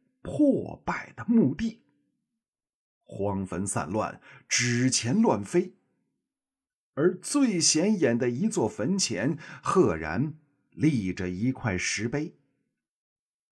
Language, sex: Chinese, male